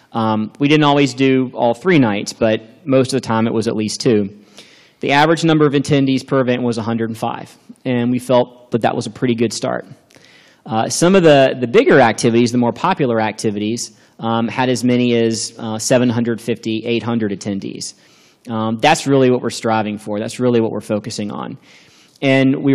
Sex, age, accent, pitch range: male, 30-49, American, 105-125 Hz